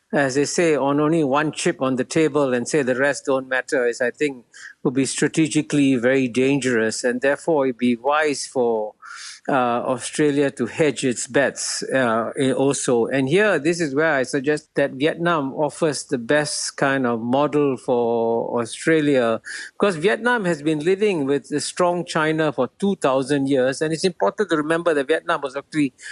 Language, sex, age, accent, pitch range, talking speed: English, male, 50-69, Indian, 130-160 Hz, 175 wpm